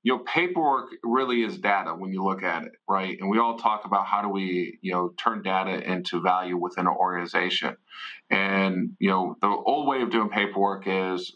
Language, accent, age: English, American, 40-59